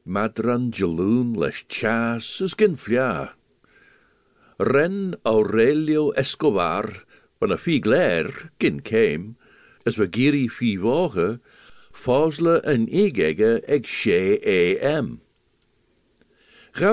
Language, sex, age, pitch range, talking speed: English, male, 60-79, 110-165 Hz, 90 wpm